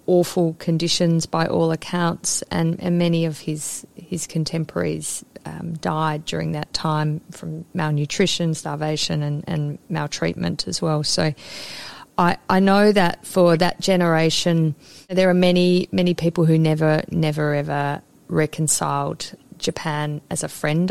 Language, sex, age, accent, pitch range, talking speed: English, female, 30-49, Australian, 155-175 Hz, 135 wpm